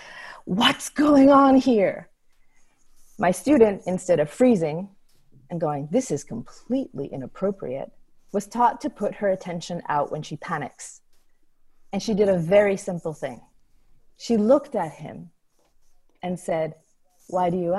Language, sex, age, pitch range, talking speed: English, female, 30-49, 175-245 Hz, 140 wpm